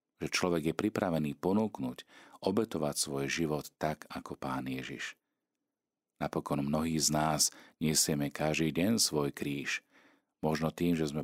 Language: Slovak